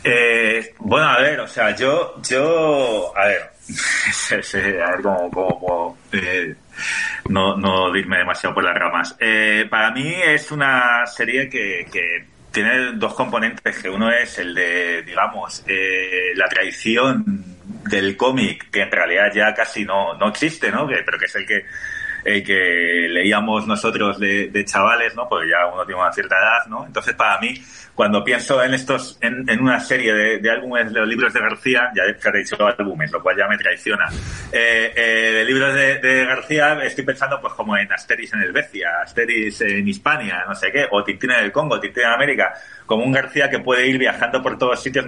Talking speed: 190 wpm